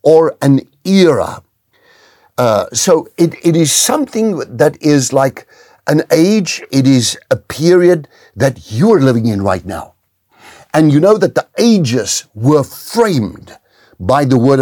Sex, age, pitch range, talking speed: male, 60-79, 130-185 Hz, 145 wpm